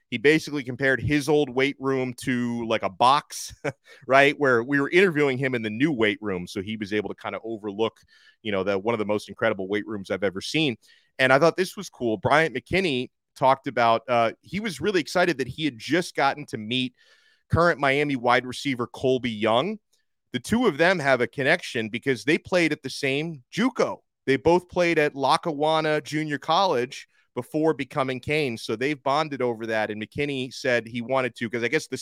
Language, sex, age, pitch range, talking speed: English, male, 30-49, 110-140 Hz, 210 wpm